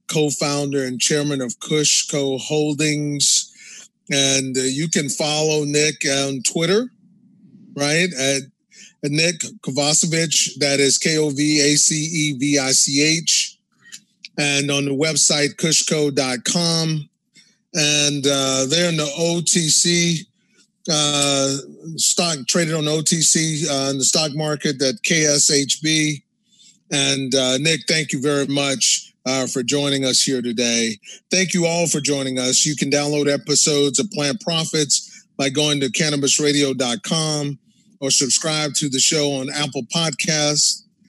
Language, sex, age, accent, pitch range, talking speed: English, male, 30-49, American, 140-170 Hz, 135 wpm